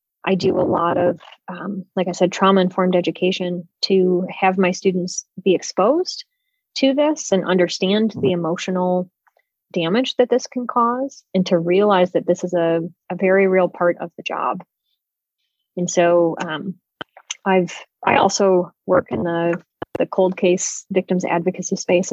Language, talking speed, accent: English, 155 wpm, American